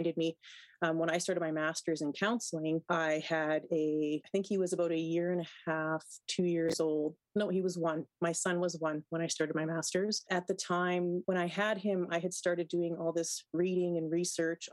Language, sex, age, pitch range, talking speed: English, female, 30-49, 160-180 Hz, 225 wpm